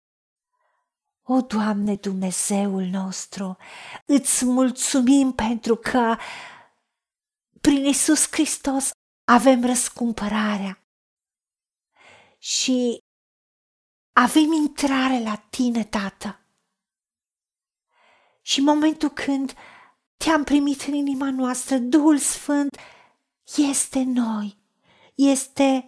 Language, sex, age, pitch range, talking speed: Romanian, female, 40-59, 230-300 Hz, 75 wpm